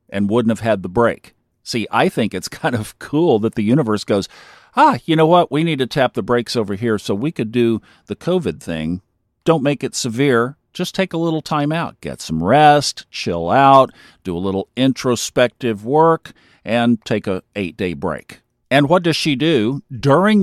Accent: American